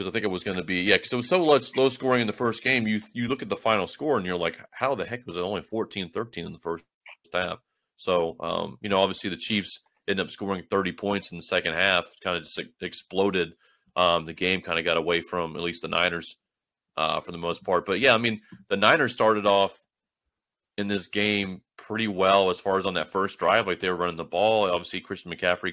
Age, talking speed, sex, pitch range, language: 30-49, 250 wpm, male, 85-100 Hz, English